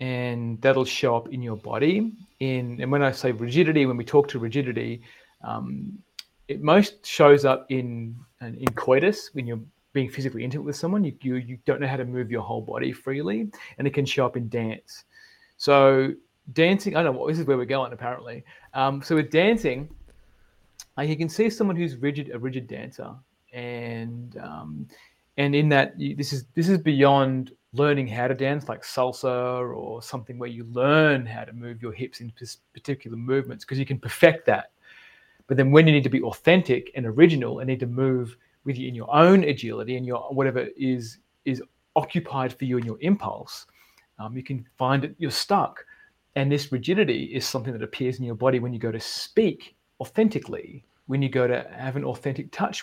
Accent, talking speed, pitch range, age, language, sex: Australian, 200 wpm, 120-145 Hz, 30-49, English, male